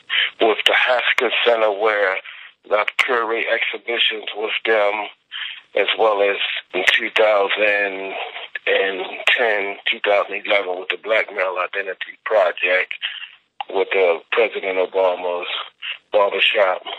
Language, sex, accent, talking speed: English, male, American, 100 wpm